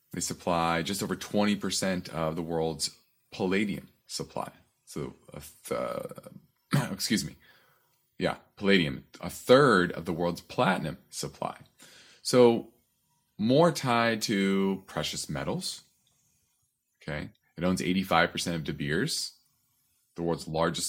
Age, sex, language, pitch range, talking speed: 30-49, male, English, 85-120 Hz, 120 wpm